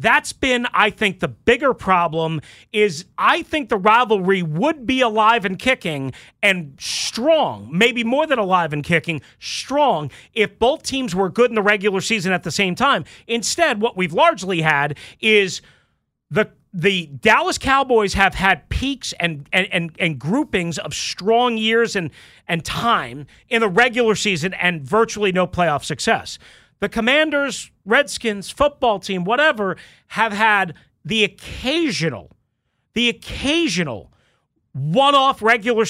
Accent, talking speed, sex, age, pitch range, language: American, 145 wpm, male, 40-59, 180-245 Hz, English